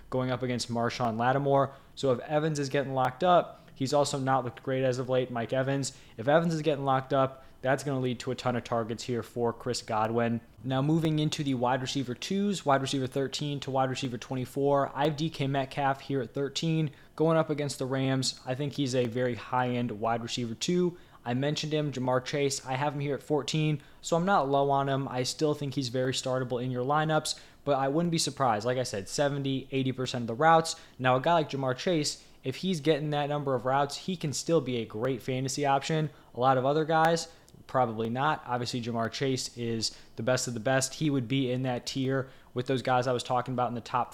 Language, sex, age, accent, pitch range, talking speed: English, male, 20-39, American, 125-145 Hz, 230 wpm